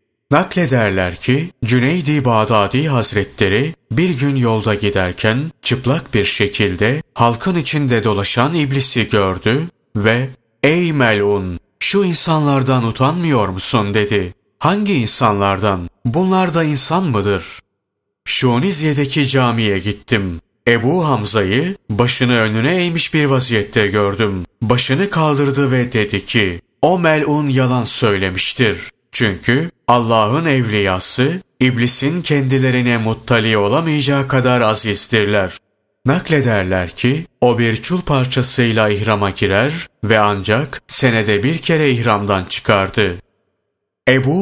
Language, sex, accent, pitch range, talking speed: Turkish, male, native, 105-140 Hz, 105 wpm